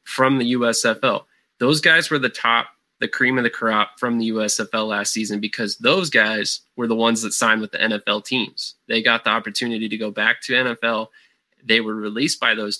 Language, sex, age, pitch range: English, male, 20-39, 105-120 Hz